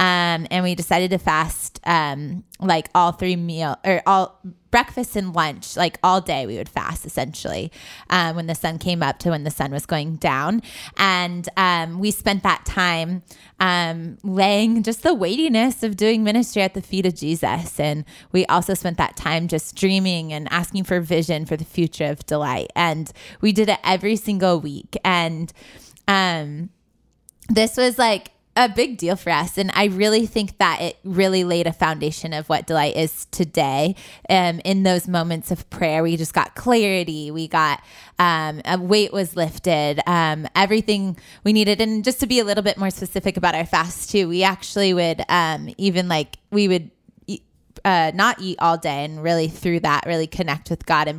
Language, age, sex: English, 20-39, female